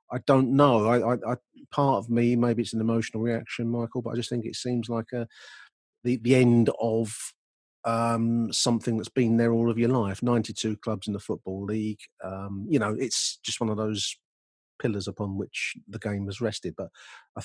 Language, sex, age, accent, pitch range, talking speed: English, male, 40-59, British, 105-120 Hz, 205 wpm